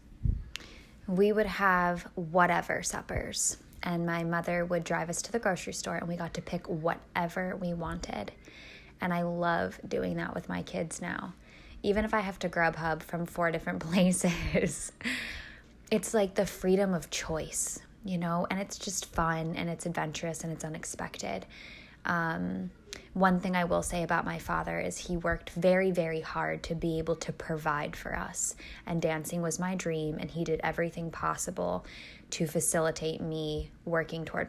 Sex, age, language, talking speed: female, 10-29, English, 170 wpm